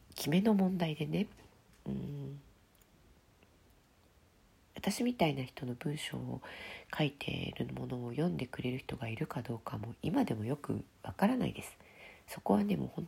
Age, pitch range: 40-59, 115-165 Hz